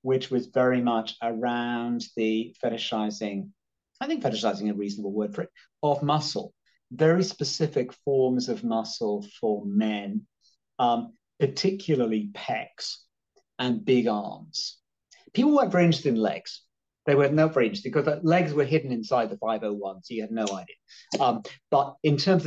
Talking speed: 155 wpm